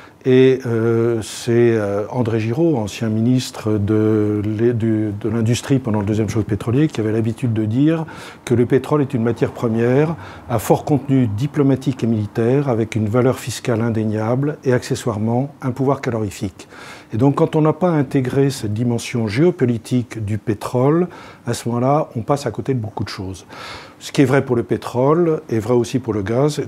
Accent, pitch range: French, 110-140 Hz